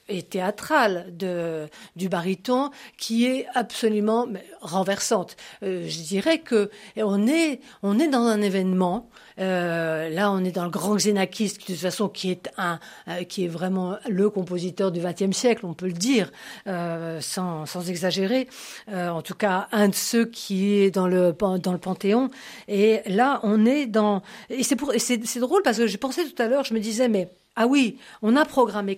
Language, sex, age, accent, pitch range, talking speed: French, female, 50-69, French, 185-240 Hz, 195 wpm